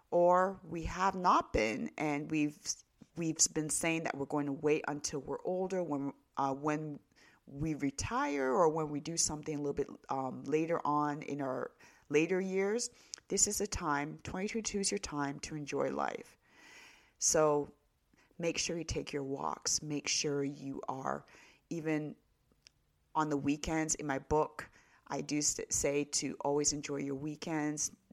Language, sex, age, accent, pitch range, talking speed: English, female, 30-49, American, 145-170 Hz, 160 wpm